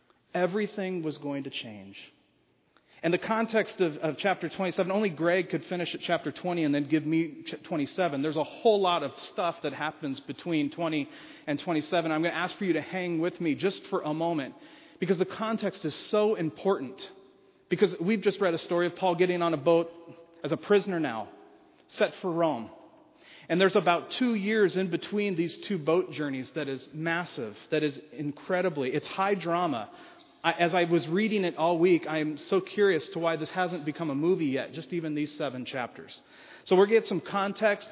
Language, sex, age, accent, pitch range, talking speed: English, male, 40-59, American, 155-195 Hz, 195 wpm